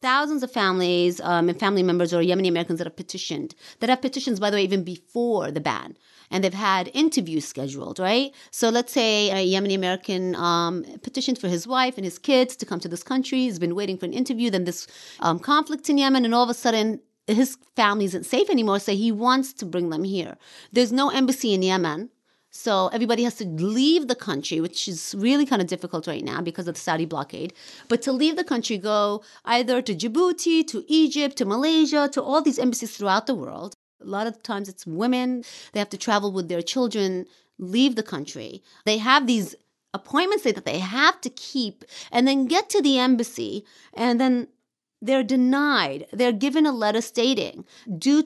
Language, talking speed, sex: English, 200 wpm, female